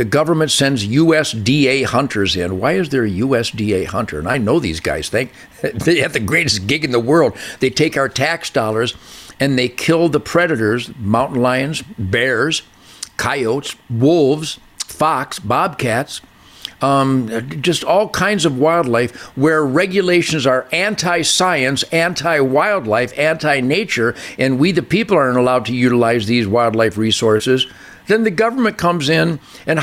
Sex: male